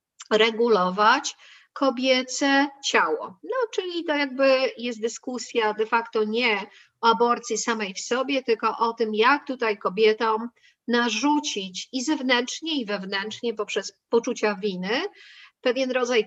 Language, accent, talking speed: Polish, native, 120 wpm